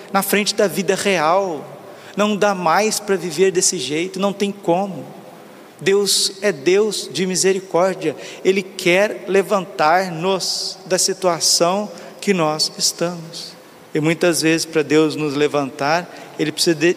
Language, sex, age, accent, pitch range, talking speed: Portuguese, male, 50-69, Brazilian, 165-195 Hz, 135 wpm